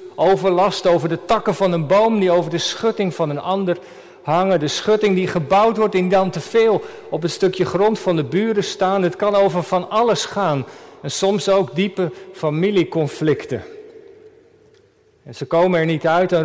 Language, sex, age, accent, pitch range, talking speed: Dutch, male, 50-69, Dutch, 170-215 Hz, 180 wpm